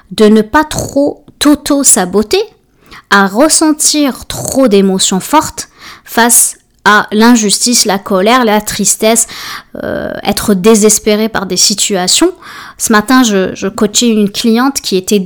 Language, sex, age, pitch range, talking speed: French, female, 20-39, 200-250 Hz, 130 wpm